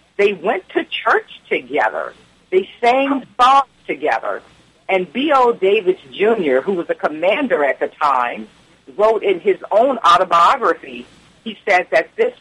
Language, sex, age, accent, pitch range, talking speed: English, female, 50-69, American, 180-245 Hz, 140 wpm